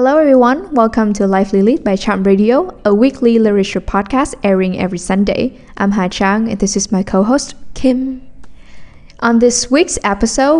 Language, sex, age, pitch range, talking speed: English, female, 10-29, 195-240 Hz, 165 wpm